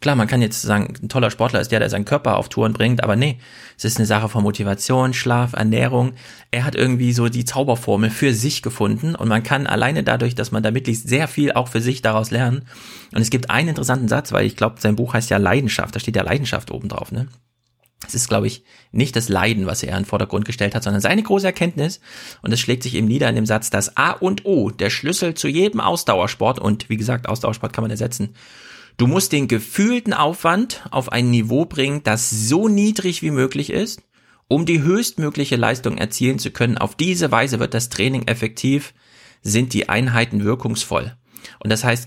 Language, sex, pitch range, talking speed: German, male, 110-135 Hz, 215 wpm